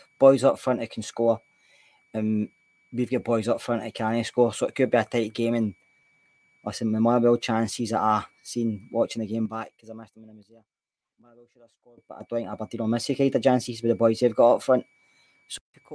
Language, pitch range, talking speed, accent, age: English, 115-135 Hz, 250 wpm, British, 20-39